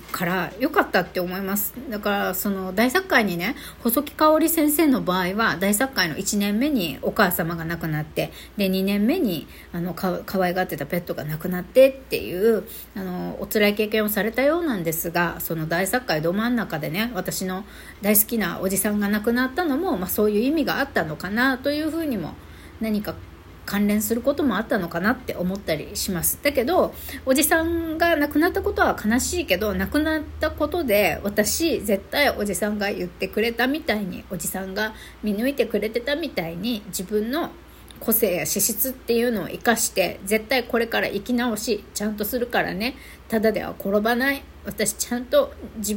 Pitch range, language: 190-270 Hz, Japanese